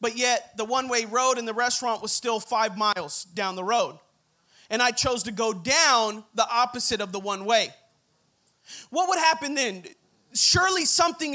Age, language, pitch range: 30-49, English, 240-310 Hz